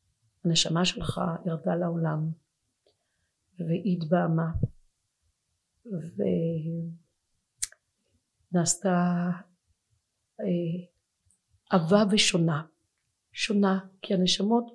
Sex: female